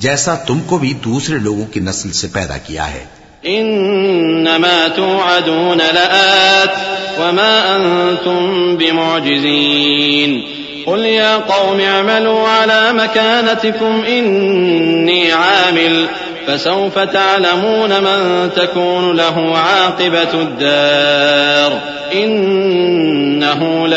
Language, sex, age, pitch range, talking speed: English, male, 40-59, 145-180 Hz, 45 wpm